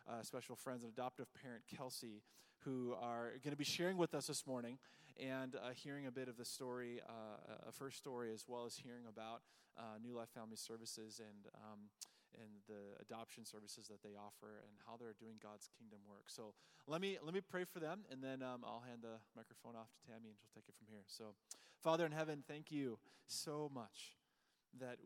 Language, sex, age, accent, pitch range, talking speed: English, male, 20-39, American, 110-130 Hz, 210 wpm